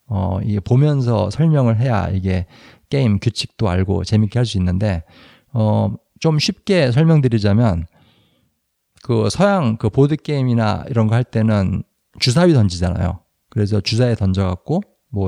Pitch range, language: 95-125 Hz, Korean